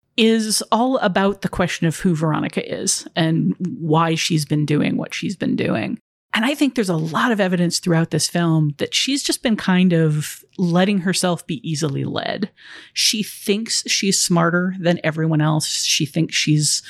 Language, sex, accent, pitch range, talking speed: English, female, American, 160-200 Hz, 180 wpm